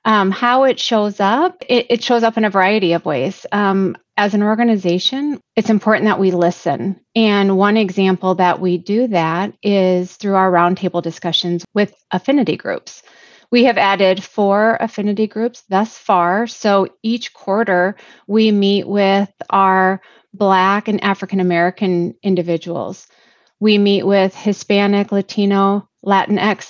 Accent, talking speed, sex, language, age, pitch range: American, 140 wpm, female, English, 30-49, 185-220 Hz